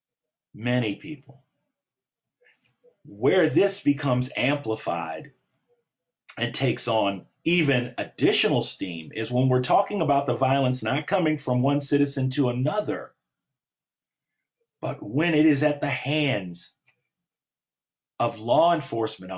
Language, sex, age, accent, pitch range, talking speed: English, male, 40-59, American, 125-170 Hz, 110 wpm